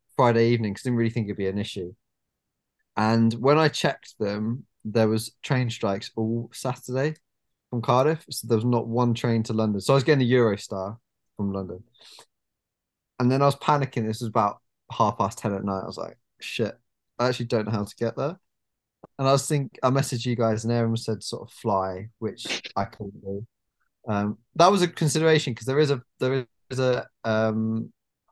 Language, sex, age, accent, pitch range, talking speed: English, male, 20-39, British, 110-130 Hz, 205 wpm